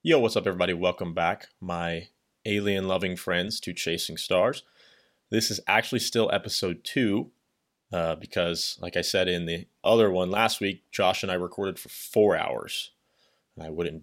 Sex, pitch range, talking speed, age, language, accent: male, 90-110 Hz, 165 wpm, 30-49, English, American